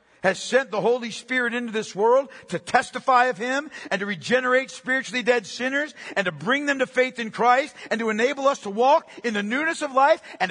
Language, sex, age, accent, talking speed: English, male, 50-69, American, 215 wpm